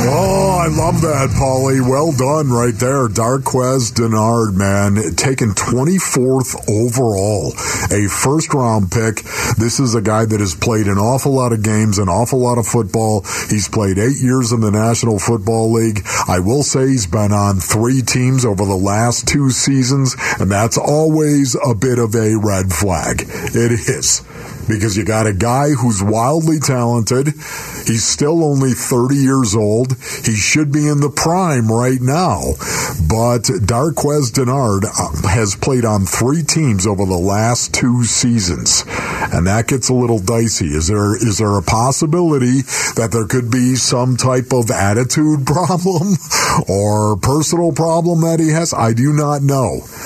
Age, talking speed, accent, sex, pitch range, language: 50-69, 160 wpm, American, male, 110-135 Hz, English